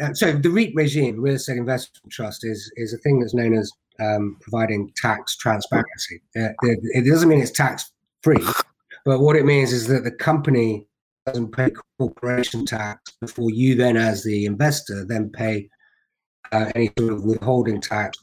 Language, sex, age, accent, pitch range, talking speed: English, male, 30-49, British, 105-130 Hz, 170 wpm